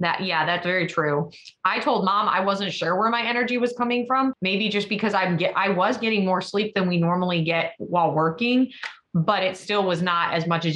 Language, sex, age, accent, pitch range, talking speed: English, female, 20-39, American, 170-205 Hz, 220 wpm